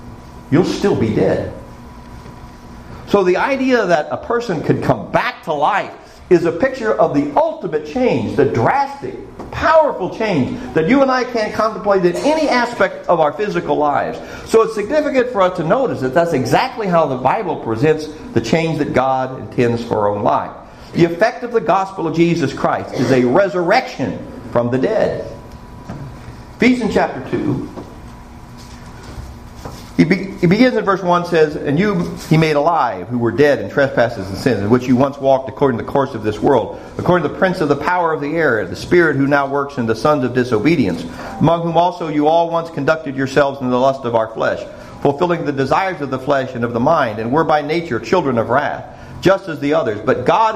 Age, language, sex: 50-69, English, male